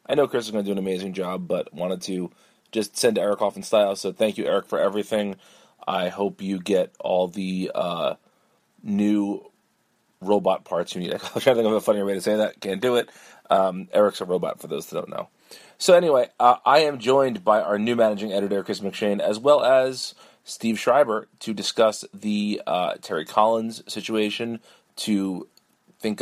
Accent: American